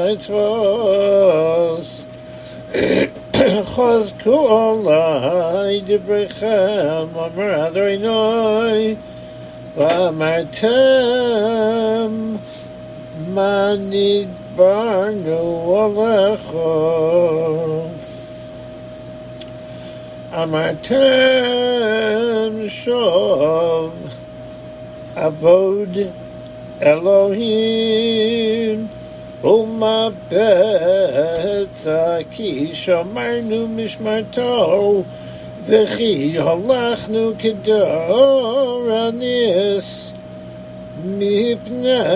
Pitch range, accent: 160-220 Hz, American